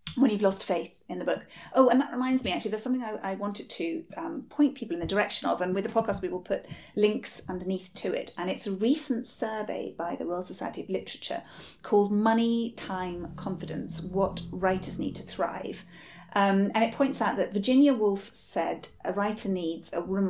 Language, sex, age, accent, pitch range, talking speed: English, female, 30-49, British, 185-240 Hz, 210 wpm